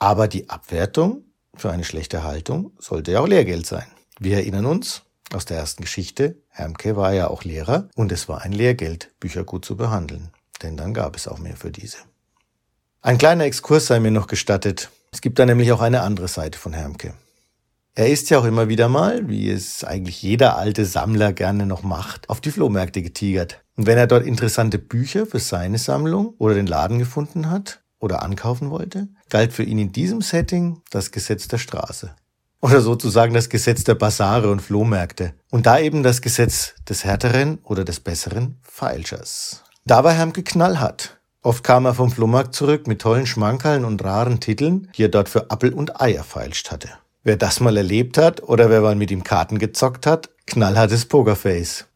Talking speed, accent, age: 190 wpm, German, 50-69